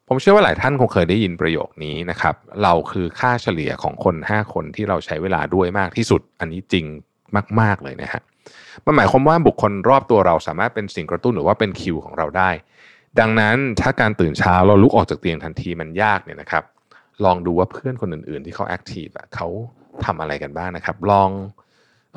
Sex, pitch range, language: male, 90-115 Hz, Thai